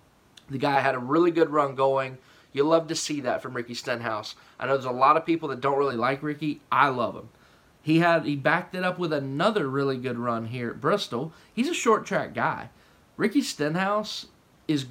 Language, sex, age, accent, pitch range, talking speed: English, male, 20-39, American, 135-160 Hz, 215 wpm